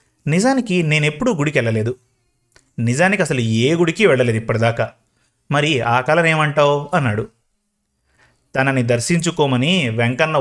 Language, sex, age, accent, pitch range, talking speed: Telugu, male, 30-49, native, 120-165 Hz, 100 wpm